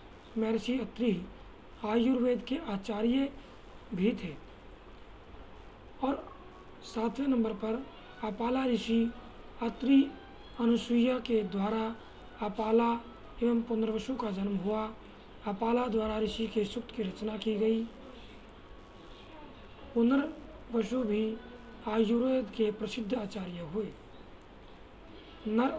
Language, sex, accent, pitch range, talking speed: Hindi, male, native, 205-235 Hz, 95 wpm